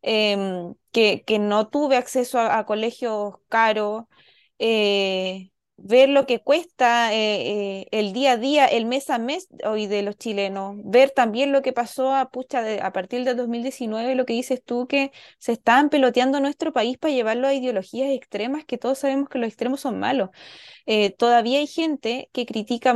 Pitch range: 220-265 Hz